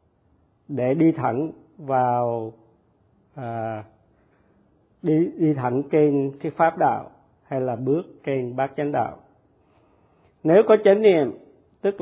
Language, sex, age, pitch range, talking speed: Vietnamese, male, 50-69, 125-160 Hz, 120 wpm